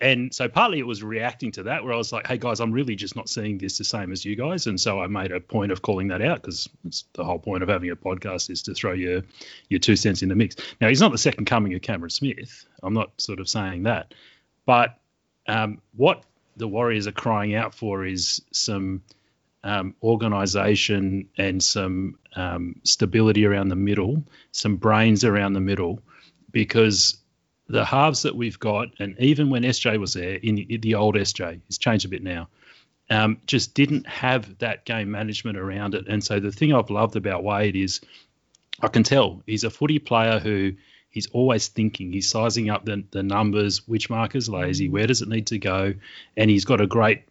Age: 30-49